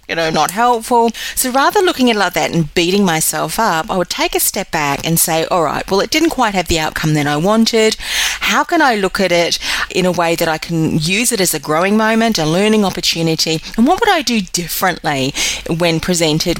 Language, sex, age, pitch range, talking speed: English, female, 40-59, 160-225 Hz, 235 wpm